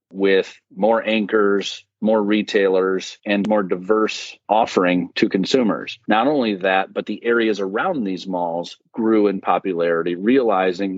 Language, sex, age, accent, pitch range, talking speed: English, male, 40-59, American, 95-110 Hz, 130 wpm